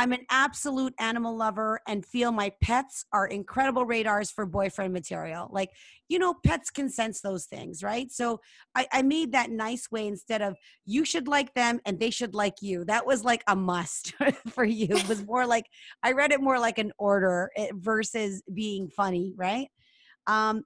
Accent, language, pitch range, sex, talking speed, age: American, English, 200-255 Hz, female, 190 wpm, 30-49